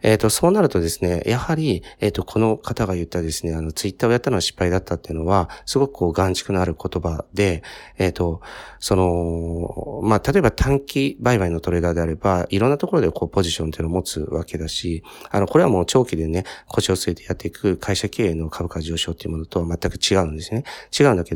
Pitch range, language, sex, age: 85-115 Hz, Japanese, male, 40-59